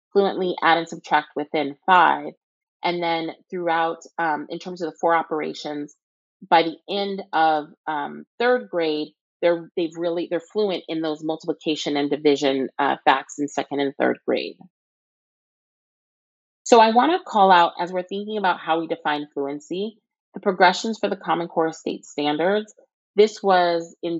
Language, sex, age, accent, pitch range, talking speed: English, female, 30-49, American, 155-205 Hz, 155 wpm